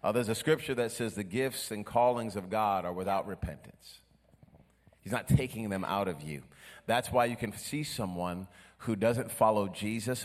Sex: male